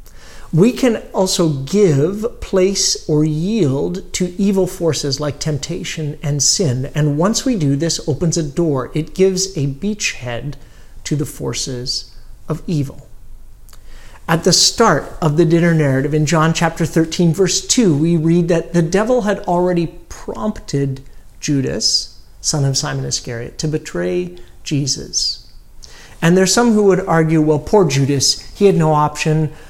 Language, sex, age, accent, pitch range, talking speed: English, male, 40-59, American, 135-180 Hz, 150 wpm